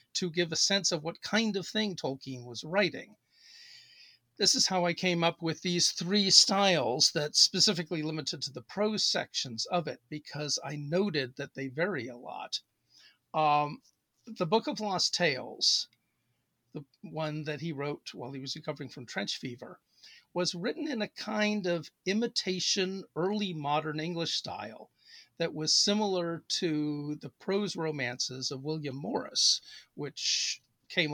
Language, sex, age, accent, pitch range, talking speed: English, male, 50-69, American, 150-195 Hz, 155 wpm